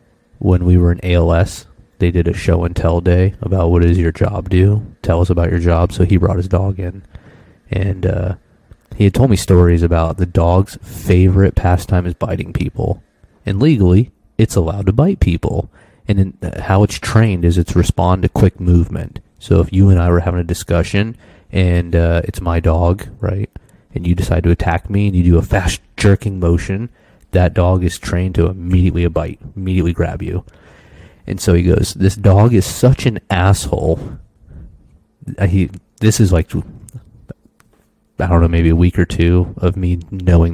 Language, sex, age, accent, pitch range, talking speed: English, male, 30-49, American, 85-100 Hz, 180 wpm